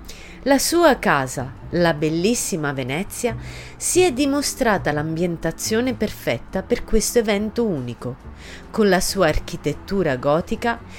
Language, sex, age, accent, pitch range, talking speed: Italian, female, 30-49, native, 155-235 Hz, 110 wpm